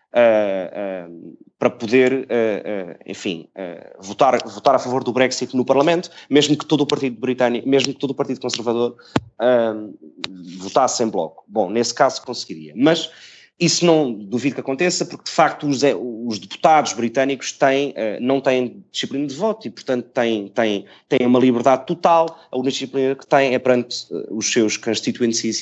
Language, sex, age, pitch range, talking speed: Portuguese, male, 20-39, 110-140 Hz, 180 wpm